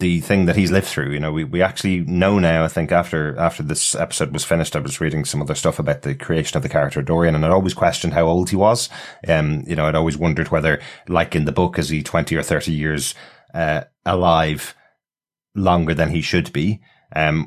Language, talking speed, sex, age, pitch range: English, 230 wpm, male, 30-49, 75-85 Hz